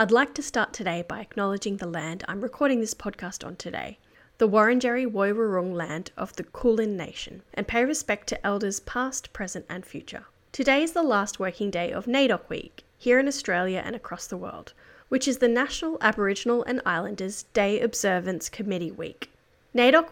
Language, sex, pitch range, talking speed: English, female, 190-250 Hz, 180 wpm